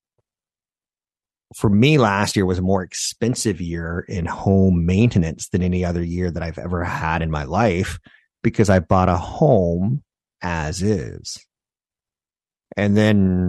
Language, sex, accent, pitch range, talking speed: English, male, American, 90-110 Hz, 140 wpm